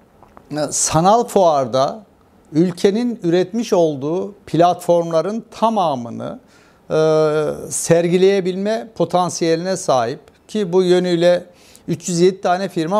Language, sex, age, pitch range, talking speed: Turkish, male, 60-79, 145-180 Hz, 80 wpm